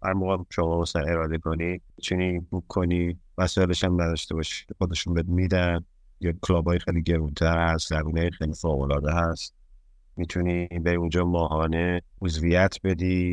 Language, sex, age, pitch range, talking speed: Persian, male, 30-49, 85-105 Hz, 125 wpm